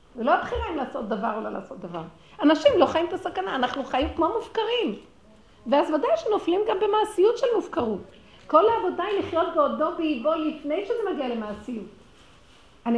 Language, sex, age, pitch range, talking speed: Hebrew, female, 50-69, 200-310 Hz, 170 wpm